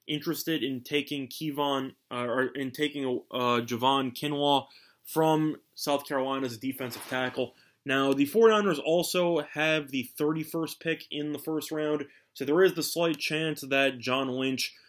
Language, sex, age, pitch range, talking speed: English, male, 20-39, 125-160 Hz, 155 wpm